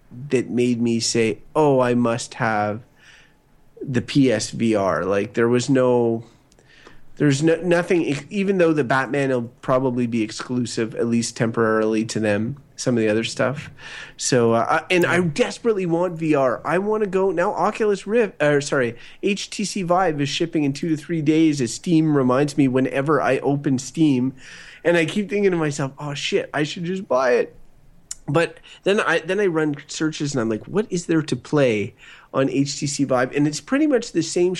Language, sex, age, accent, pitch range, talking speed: English, male, 30-49, American, 125-170 Hz, 180 wpm